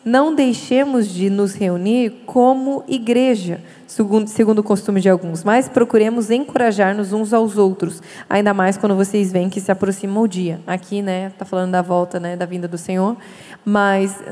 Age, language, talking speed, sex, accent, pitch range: 20-39, Portuguese, 170 wpm, female, Brazilian, 195-235 Hz